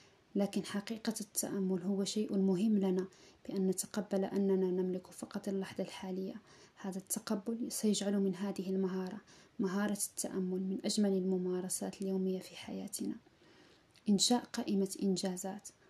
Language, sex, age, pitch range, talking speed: Arabic, female, 20-39, 190-210 Hz, 115 wpm